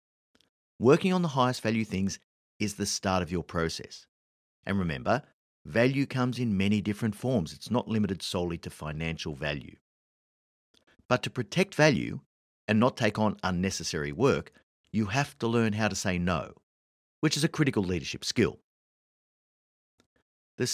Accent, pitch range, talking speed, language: Australian, 90-130 Hz, 150 wpm, English